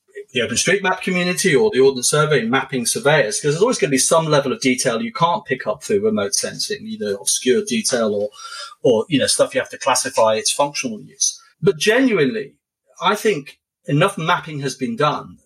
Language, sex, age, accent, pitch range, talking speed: English, male, 40-59, British, 130-195 Hz, 195 wpm